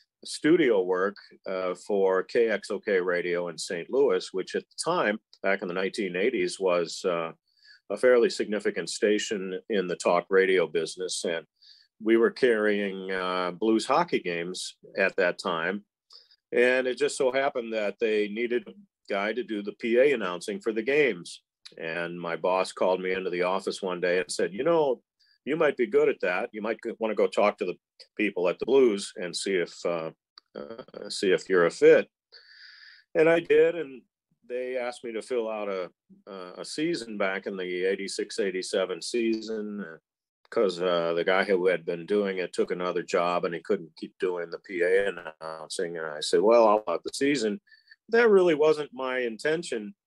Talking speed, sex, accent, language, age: 180 wpm, male, American, English, 40-59